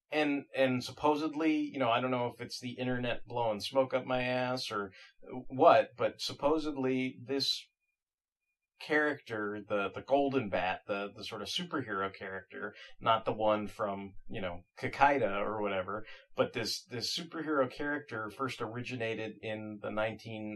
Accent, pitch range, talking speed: American, 105-135 Hz, 150 wpm